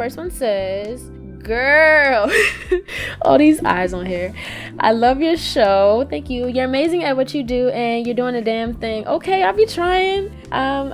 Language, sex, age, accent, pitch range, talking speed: English, female, 10-29, American, 190-250 Hz, 175 wpm